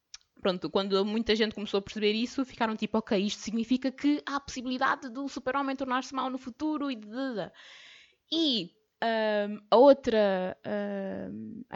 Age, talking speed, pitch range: 20-39, 155 wpm, 200-255 Hz